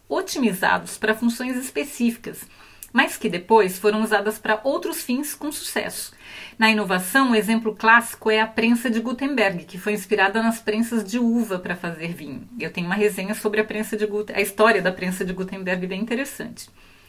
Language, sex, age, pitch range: Portuguese, female, 30-49, 195-245 Hz